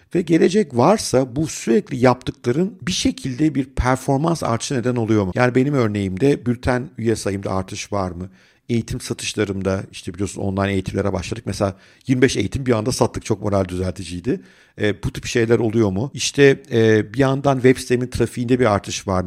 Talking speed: 170 wpm